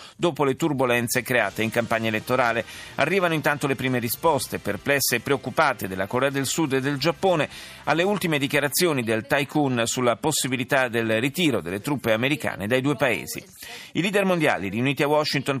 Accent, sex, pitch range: native, male, 120-150 Hz